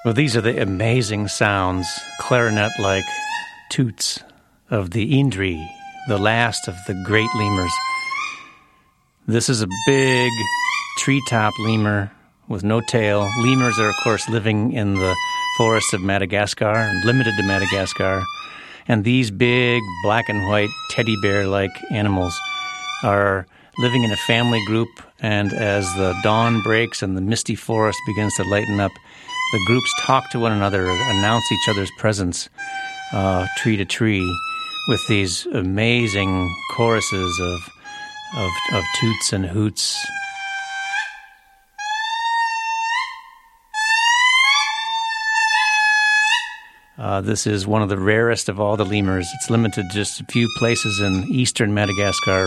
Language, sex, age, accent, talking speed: English, male, 50-69, American, 125 wpm